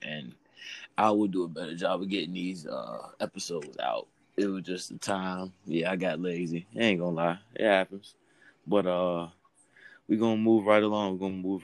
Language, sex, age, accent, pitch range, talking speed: English, male, 20-39, American, 80-95 Hz, 200 wpm